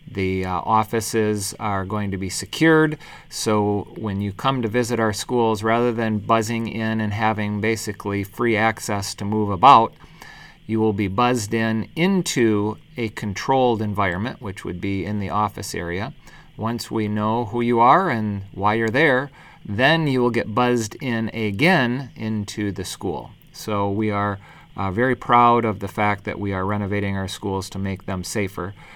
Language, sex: English, male